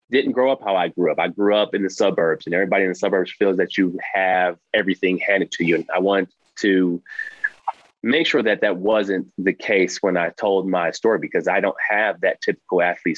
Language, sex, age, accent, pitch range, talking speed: English, male, 30-49, American, 90-100 Hz, 225 wpm